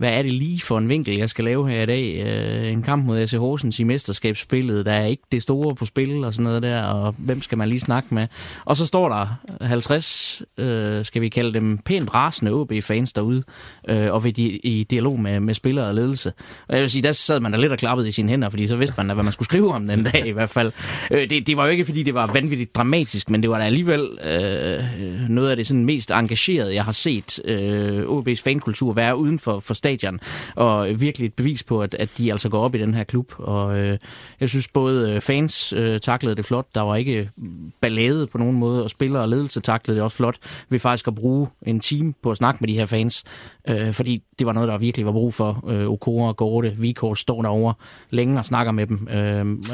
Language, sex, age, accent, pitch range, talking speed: Danish, male, 20-39, native, 110-135 Hz, 240 wpm